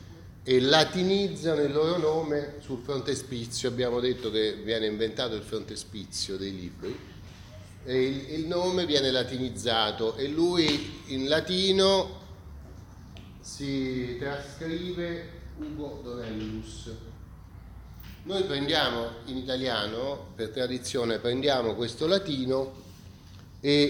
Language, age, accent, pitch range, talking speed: Italian, 30-49, native, 105-145 Hz, 100 wpm